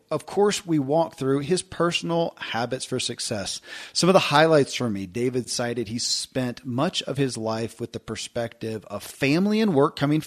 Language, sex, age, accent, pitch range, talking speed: English, male, 40-59, American, 120-155 Hz, 185 wpm